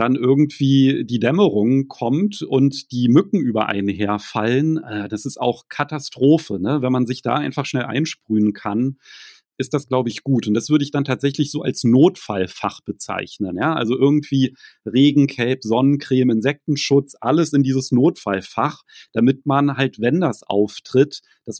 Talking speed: 155 wpm